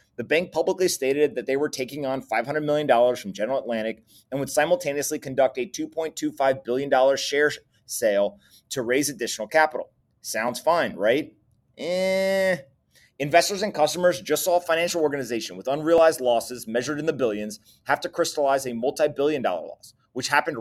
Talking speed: 160 wpm